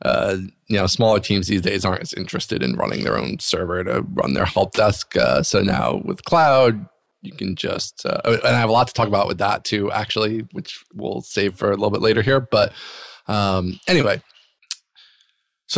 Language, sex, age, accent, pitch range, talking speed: English, male, 20-39, American, 105-140 Hz, 205 wpm